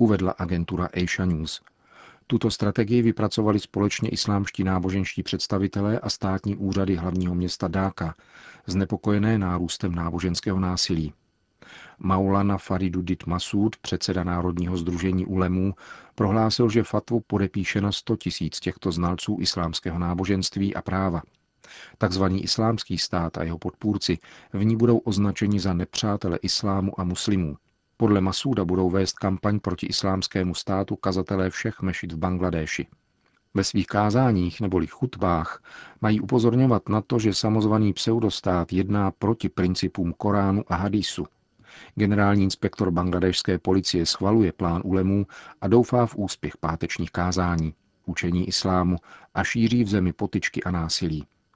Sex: male